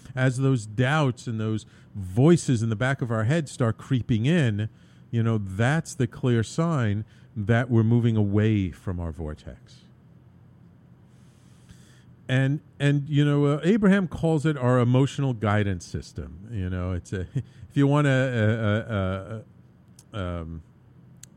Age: 50-69